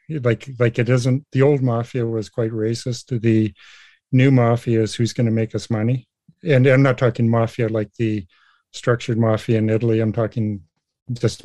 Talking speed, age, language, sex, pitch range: 185 wpm, 50-69, English, male, 110-125 Hz